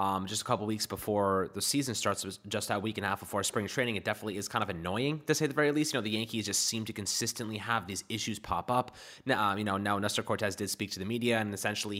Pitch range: 100-120 Hz